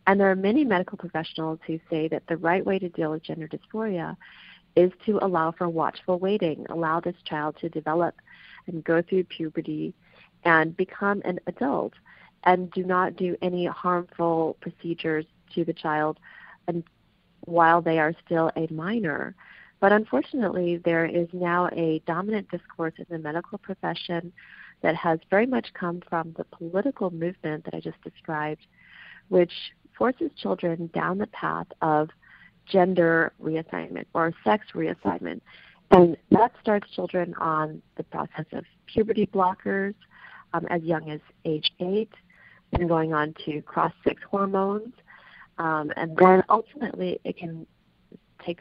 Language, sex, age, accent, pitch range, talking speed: English, female, 40-59, American, 160-185 Hz, 145 wpm